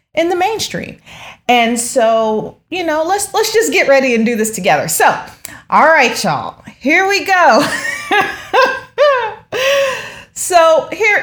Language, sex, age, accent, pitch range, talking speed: English, female, 30-49, American, 215-310 Hz, 135 wpm